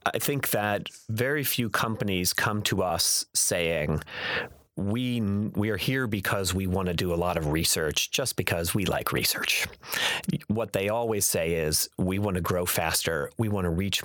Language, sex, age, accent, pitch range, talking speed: English, male, 30-49, American, 90-110 Hz, 180 wpm